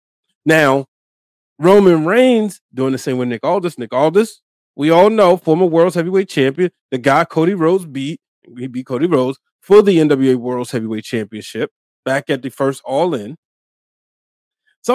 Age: 30-49